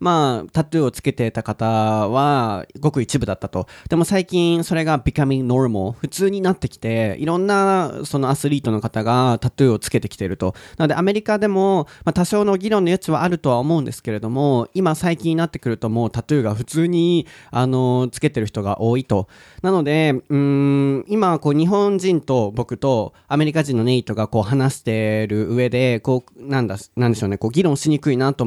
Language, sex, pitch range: Japanese, male, 115-170 Hz